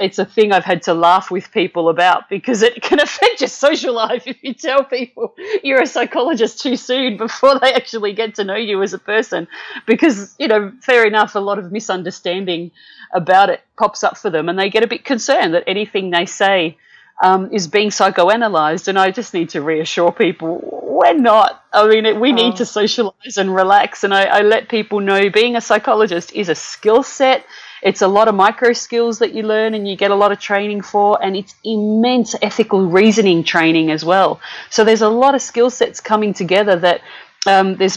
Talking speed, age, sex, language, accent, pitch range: 210 wpm, 40-59, female, English, Australian, 175-225 Hz